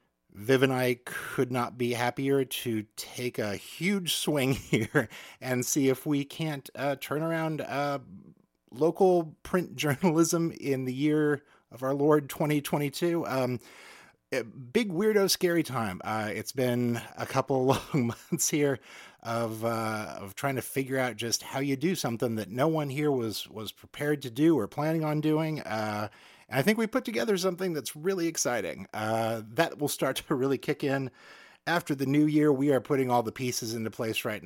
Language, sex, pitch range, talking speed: English, male, 110-150 Hz, 175 wpm